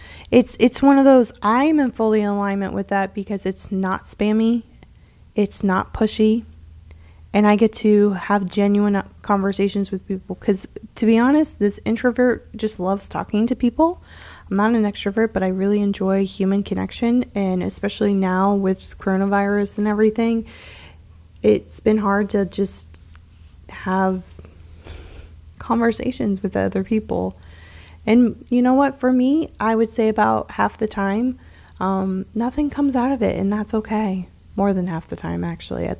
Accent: American